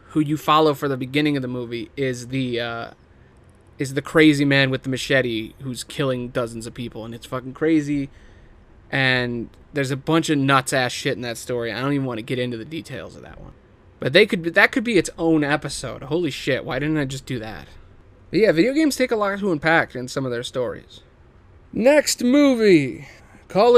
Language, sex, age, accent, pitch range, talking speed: English, male, 30-49, American, 120-160 Hz, 215 wpm